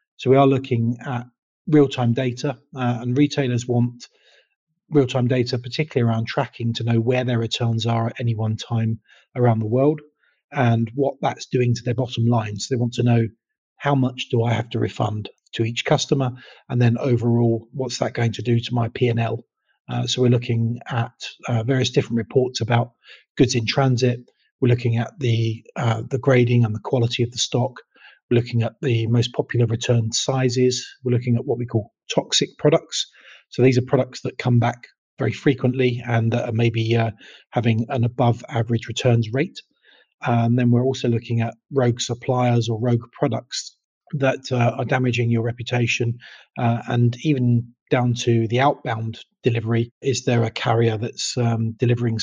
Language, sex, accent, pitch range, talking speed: English, male, British, 115-130 Hz, 180 wpm